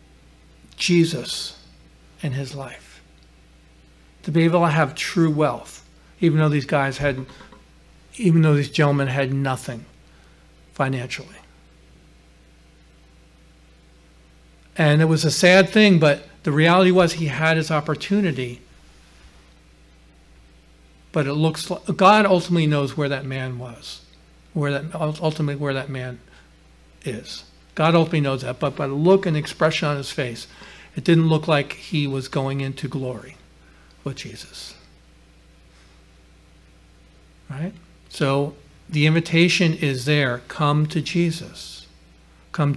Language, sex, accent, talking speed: English, male, American, 125 wpm